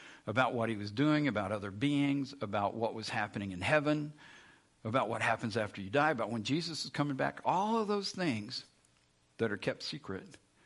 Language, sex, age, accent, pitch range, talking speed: English, male, 50-69, American, 100-135 Hz, 190 wpm